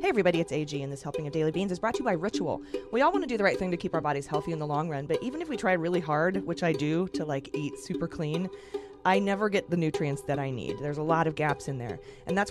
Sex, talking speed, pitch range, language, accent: female, 310 wpm, 145-195 Hz, English, American